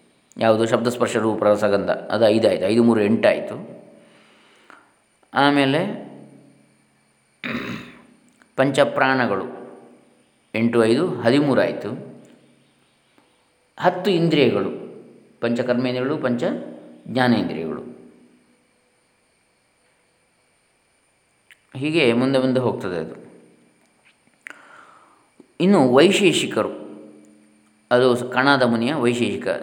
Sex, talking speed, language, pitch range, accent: male, 65 wpm, Kannada, 105-130 Hz, native